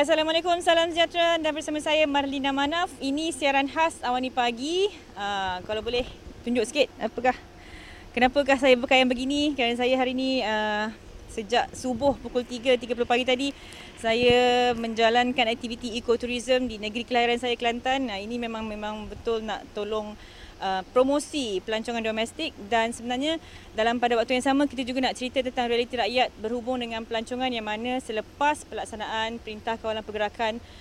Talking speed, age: 160 wpm, 20-39